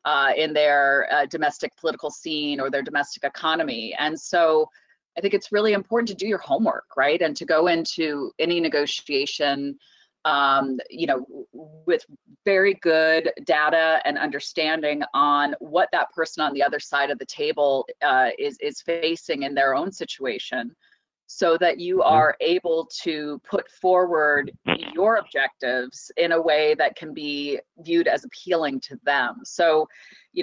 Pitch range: 145-205 Hz